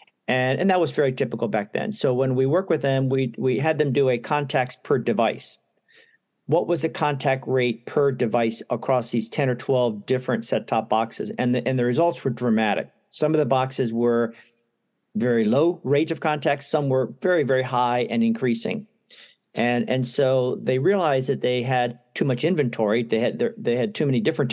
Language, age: English, 50-69